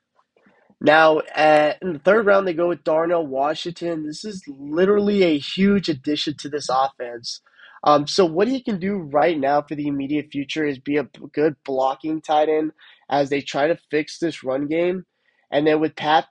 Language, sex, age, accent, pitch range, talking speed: English, male, 20-39, American, 140-170 Hz, 190 wpm